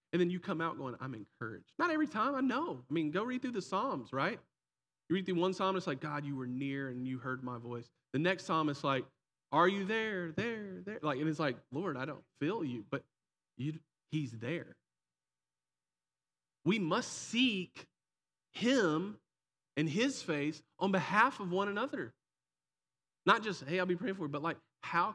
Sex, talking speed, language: male, 200 wpm, English